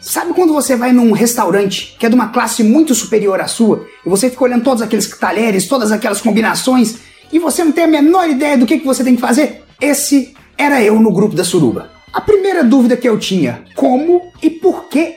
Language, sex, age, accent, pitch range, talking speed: Portuguese, male, 30-49, Brazilian, 220-300 Hz, 220 wpm